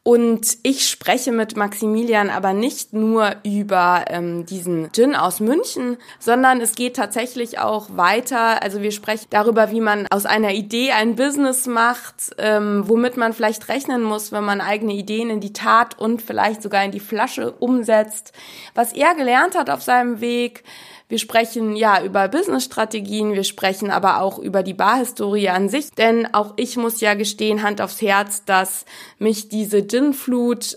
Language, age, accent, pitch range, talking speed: German, 20-39, German, 205-240 Hz, 170 wpm